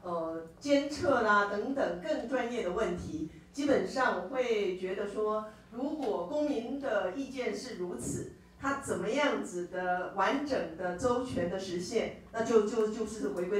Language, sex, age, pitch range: Chinese, female, 40-59, 180-245 Hz